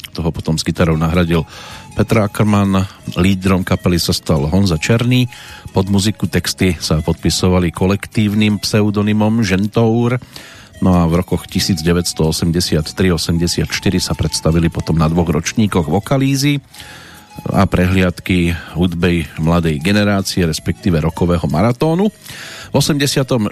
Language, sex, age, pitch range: Slovak, male, 40-59, 85-105 Hz